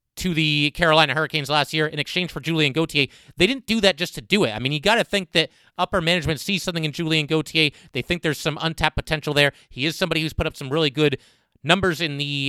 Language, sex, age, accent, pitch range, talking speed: English, male, 30-49, American, 145-180 Hz, 250 wpm